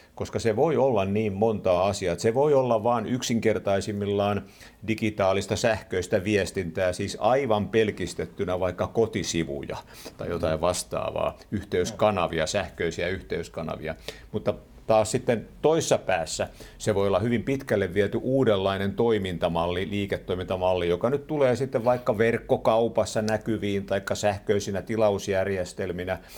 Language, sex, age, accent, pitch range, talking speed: Finnish, male, 50-69, native, 90-110 Hz, 115 wpm